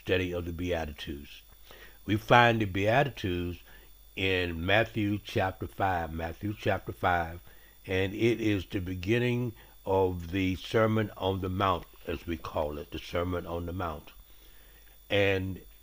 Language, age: English, 60-79